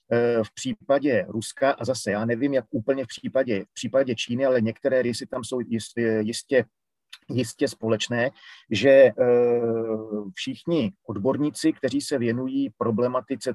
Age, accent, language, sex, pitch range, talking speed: 40-59, native, Czech, male, 115-145 Hz, 130 wpm